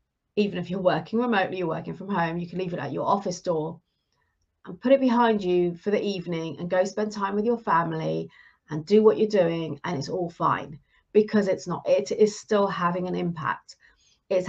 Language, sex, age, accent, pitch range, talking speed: English, female, 40-59, British, 180-240 Hz, 210 wpm